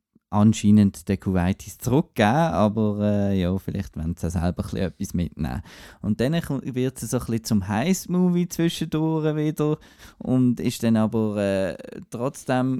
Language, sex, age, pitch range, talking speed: German, male, 20-39, 105-120 Hz, 150 wpm